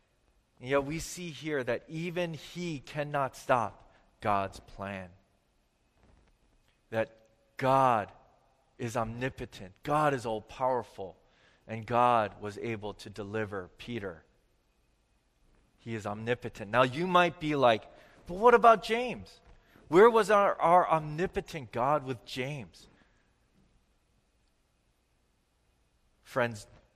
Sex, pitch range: male, 115-160 Hz